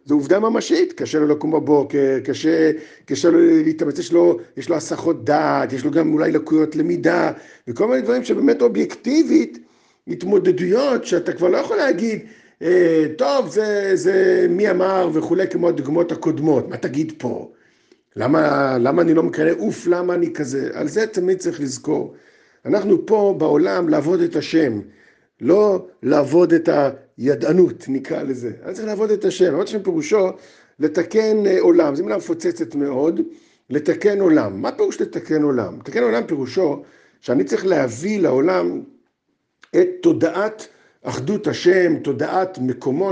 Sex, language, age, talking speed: male, Hebrew, 50-69, 140 wpm